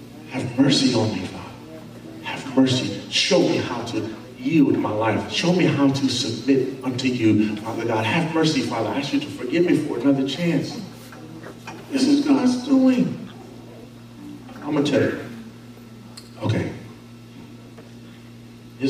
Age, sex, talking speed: 40-59, male, 145 wpm